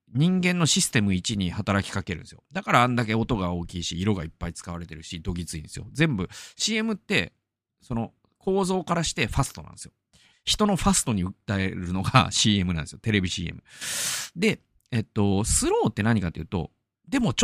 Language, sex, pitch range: Japanese, male, 95-140 Hz